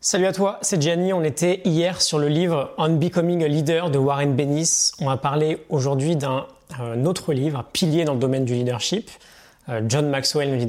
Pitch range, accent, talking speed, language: 125-170 Hz, French, 225 wpm, French